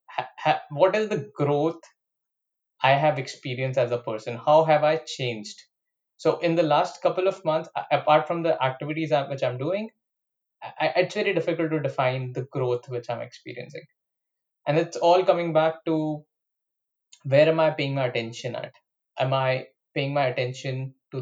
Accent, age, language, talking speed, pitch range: Indian, 20-39, English, 160 wpm, 130-165 Hz